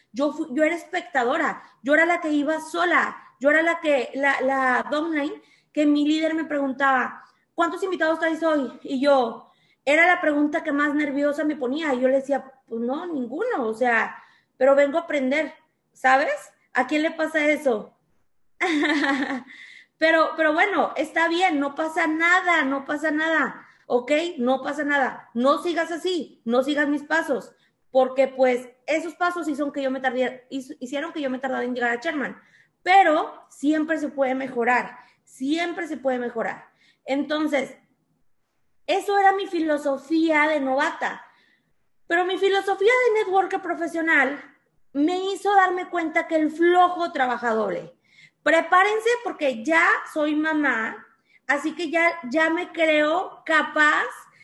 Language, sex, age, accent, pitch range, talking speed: Spanish, female, 20-39, Mexican, 270-335 Hz, 150 wpm